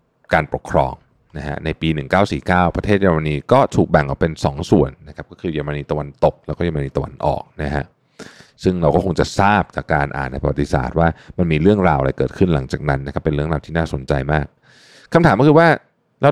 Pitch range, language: 75-105 Hz, Thai